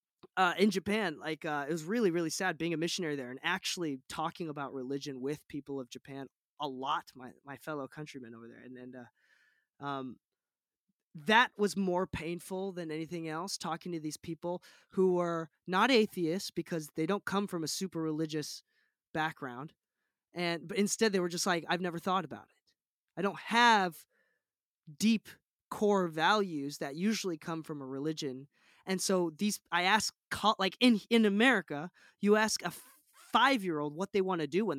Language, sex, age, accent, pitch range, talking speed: English, male, 20-39, American, 145-195 Hz, 180 wpm